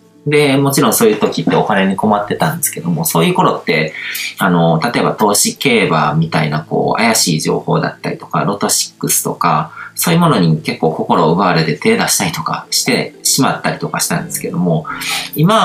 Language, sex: Japanese, male